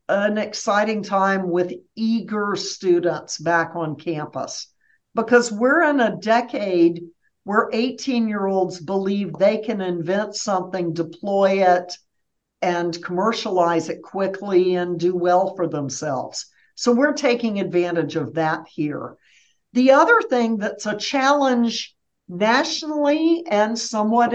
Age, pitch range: 60-79, 185-230 Hz